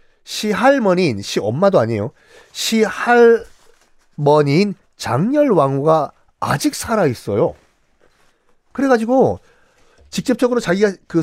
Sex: male